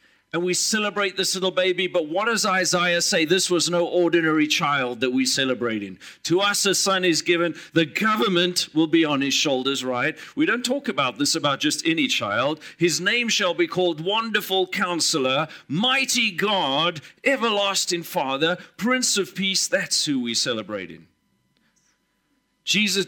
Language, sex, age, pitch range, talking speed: English, male, 40-59, 145-200 Hz, 165 wpm